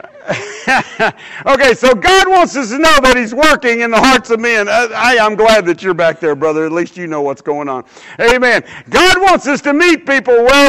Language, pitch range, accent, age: English, 195-255 Hz, American, 50-69